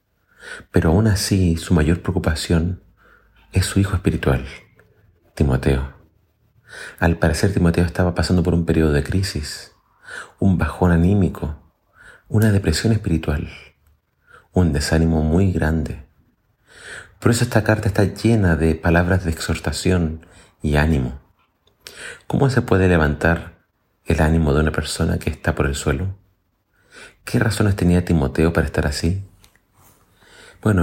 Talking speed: 125 wpm